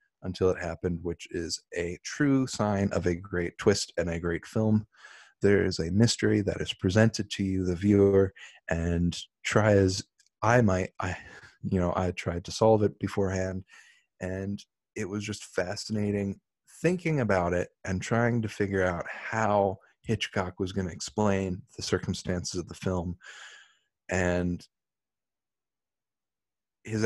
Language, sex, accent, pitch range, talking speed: English, male, American, 90-105 Hz, 150 wpm